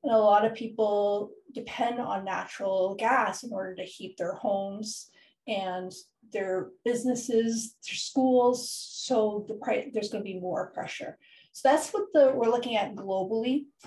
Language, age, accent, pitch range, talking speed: English, 40-59, American, 195-250 Hz, 155 wpm